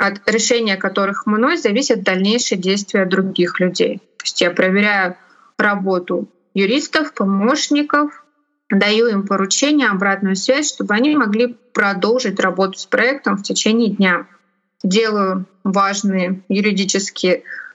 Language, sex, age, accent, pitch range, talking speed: Russian, female, 20-39, native, 195-245 Hz, 115 wpm